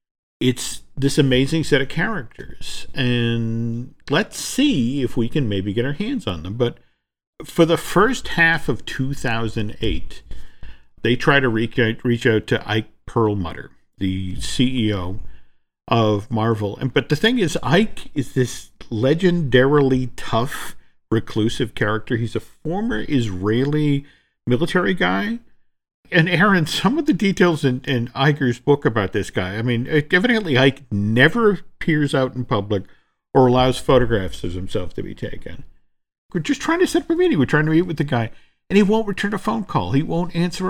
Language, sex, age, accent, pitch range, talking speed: English, male, 50-69, American, 110-160 Hz, 160 wpm